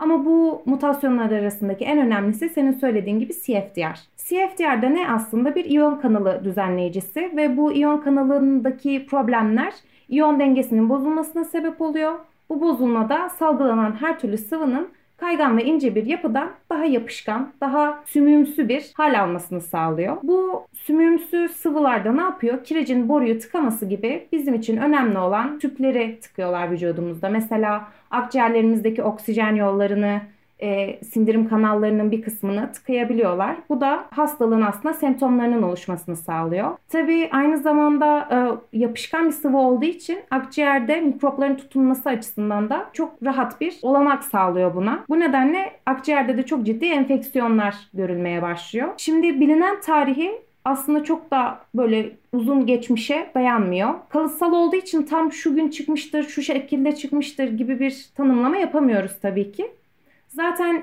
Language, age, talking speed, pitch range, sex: Turkish, 30-49, 135 wpm, 225-305 Hz, female